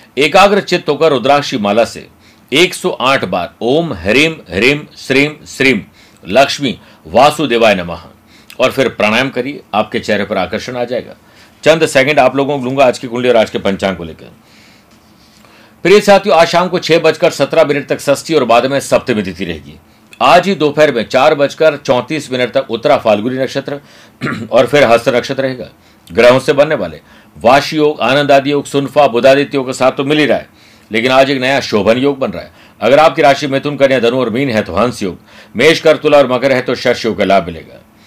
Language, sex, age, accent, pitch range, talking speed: Hindi, male, 60-79, native, 120-150 Hz, 150 wpm